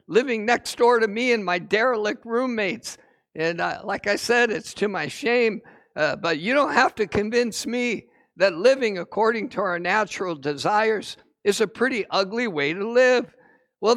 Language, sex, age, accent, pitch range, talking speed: English, male, 60-79, American, 205-255 Hz, 175 wpm